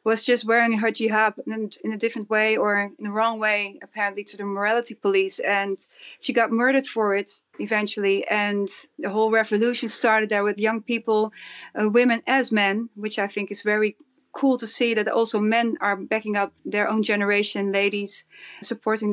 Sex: female